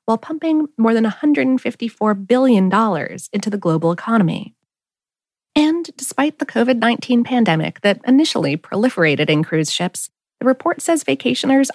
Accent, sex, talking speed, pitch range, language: American, female, 130 wpm, 190-265 Hz, English